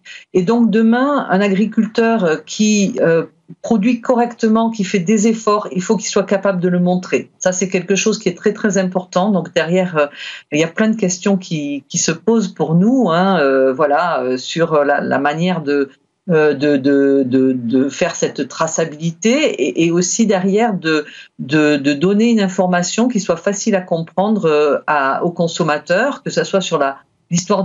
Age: 50-69